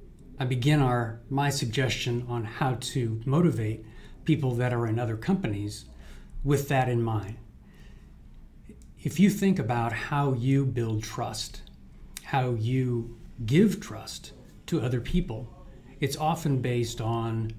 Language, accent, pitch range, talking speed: English, American, 115-145 Hz, 130 wpm